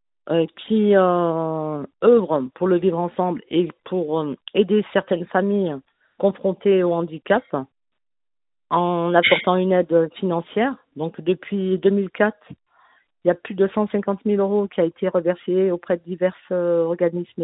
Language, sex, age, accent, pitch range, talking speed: French, female, 40-59, French, 160-190 Hz, 145 wpm